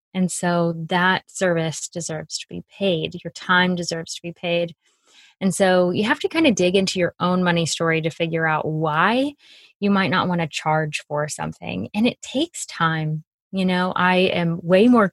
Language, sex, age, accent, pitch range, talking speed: English, female, 20-39, American, 165-200 Hz, 195 wpm